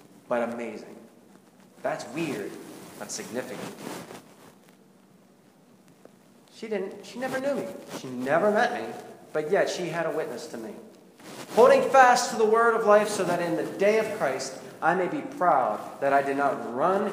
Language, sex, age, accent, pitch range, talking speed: English, male, 20-39, American, 120-175 Hz, 165 wpm